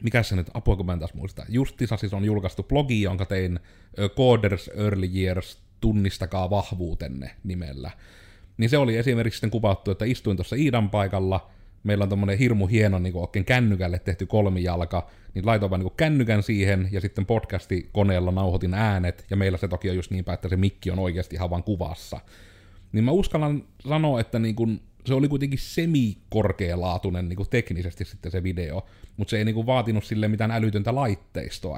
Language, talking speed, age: Finnish, 175 wpm, 30-49